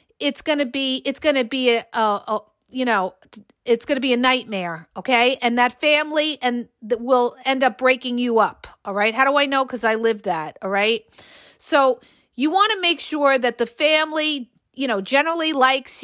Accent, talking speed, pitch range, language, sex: American, 210 wpm, 235-300 Hz, English, female